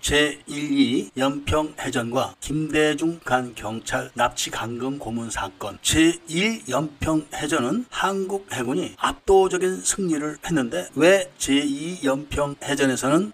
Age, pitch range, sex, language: 40-59, 140-185 Hz, male, Korean